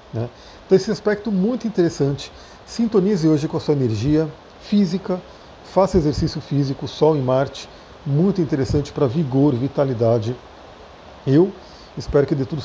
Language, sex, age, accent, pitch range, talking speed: Portuguese, male, 40-59, Brazilian, 130-185 Hz, 140 wpm